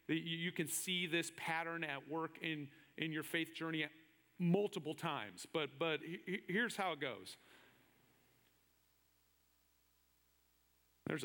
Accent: American